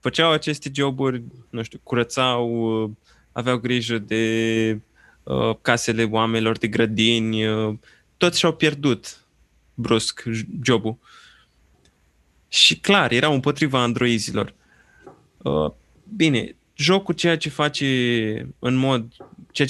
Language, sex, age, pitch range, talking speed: Romanian, male, 20-39, 115-145 Hz, 105 wpm